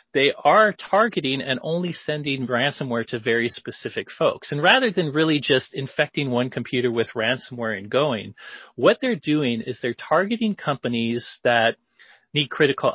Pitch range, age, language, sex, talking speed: 115-145 Hz, 30-49, English, male, 155 wpm